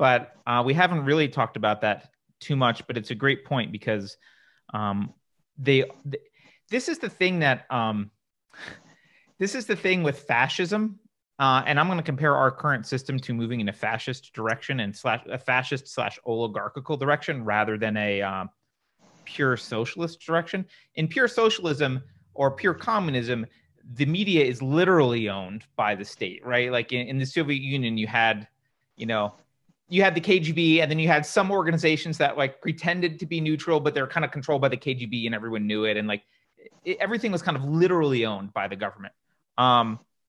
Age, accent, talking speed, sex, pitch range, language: 30-49, American, 190 wpm, male, 120-160 Hz, English